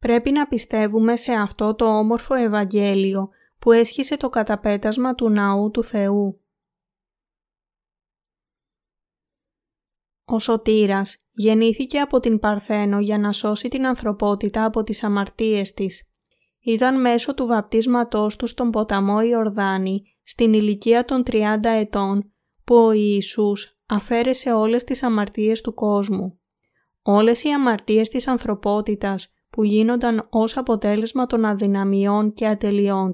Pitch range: 205-235 Hz